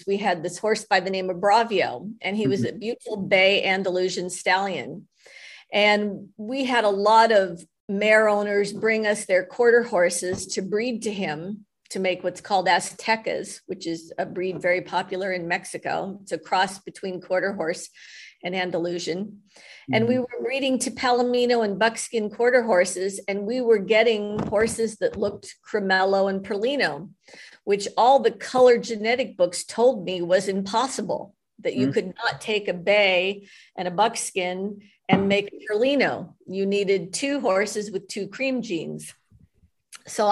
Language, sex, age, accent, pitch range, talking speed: English, female, 50-69, American, 190-225 Hz, 160 wpm